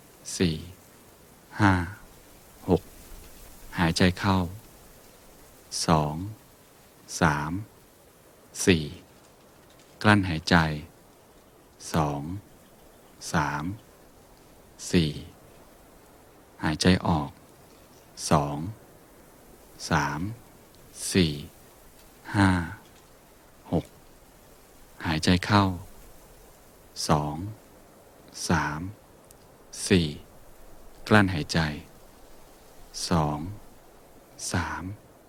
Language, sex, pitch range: Thai, male, 80-95 Hz